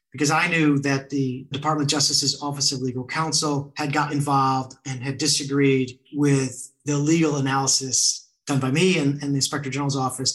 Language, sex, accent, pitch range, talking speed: English, male, American, 135-155 Hz, 180 wpm